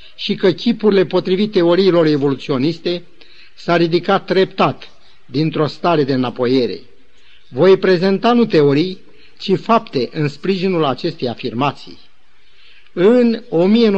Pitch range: 150-205 Hz